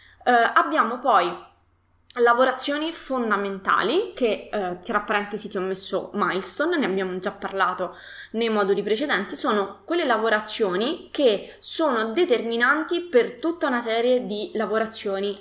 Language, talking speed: Italian, 125 wpm